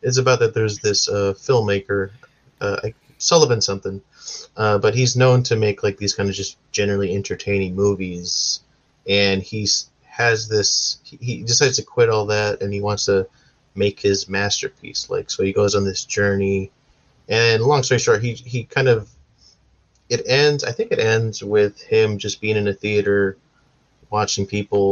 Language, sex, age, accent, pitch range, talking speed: English, male, 20-39, American, 100-125 Hz, 170 wpm